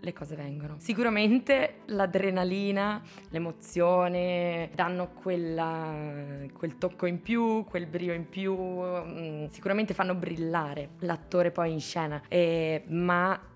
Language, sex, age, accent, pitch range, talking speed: Italian, female, 20-39, native, 160-180 Hz, 100 wpm